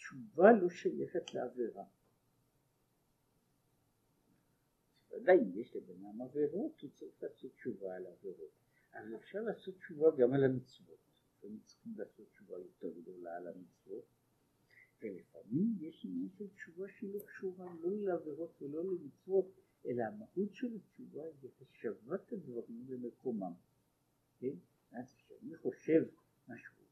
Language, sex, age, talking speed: Hebrew, male, 60-79, 110 wpm